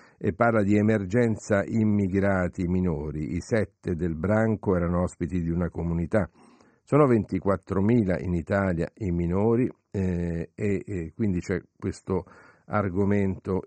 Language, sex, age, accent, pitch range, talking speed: Italian, male, 50-69, native, 90-110 Hz, 125 wpm